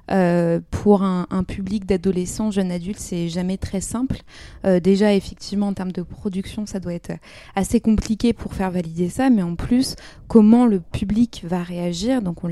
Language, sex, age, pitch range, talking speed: French, female, 20-39, 180-215 Hz, 180 wpm